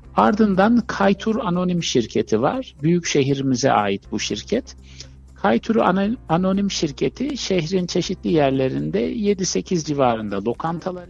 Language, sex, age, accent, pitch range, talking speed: Turkish, male, 60-79, native, 120-175 Hz, 105 wpm